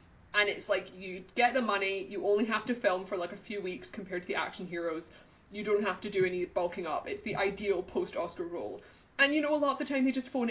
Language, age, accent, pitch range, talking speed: English, 20-39, British, 195-260 Hz, 265 wpm